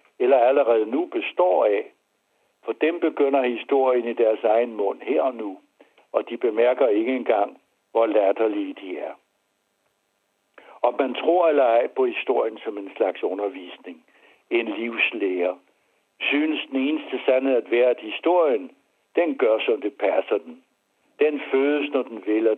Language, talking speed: Danish, 155 wpm